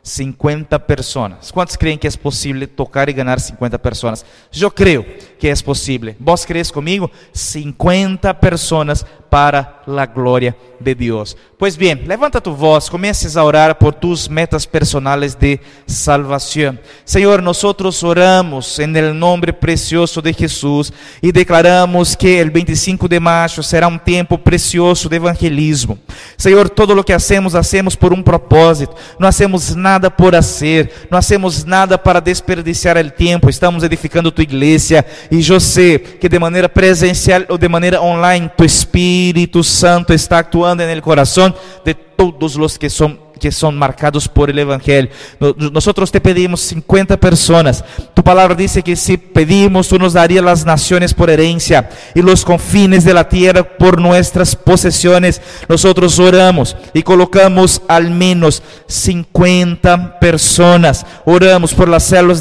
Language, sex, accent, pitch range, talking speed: Spanish, male, Brazilian, 150-180 Hz, 150 wpm